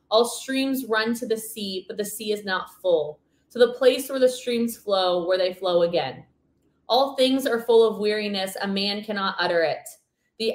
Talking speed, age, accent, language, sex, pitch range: 200 wpm, 20-39, American, English, female, 185-235 Hz